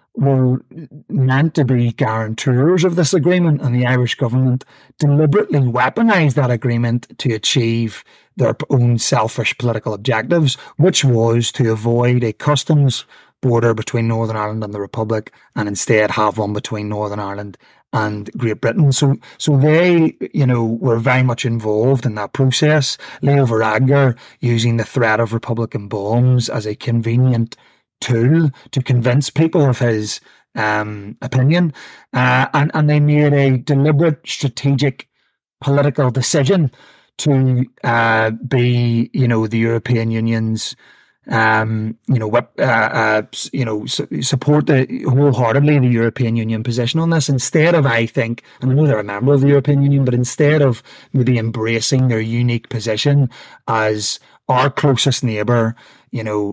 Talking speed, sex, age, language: 150 wpm, male, 30-49, English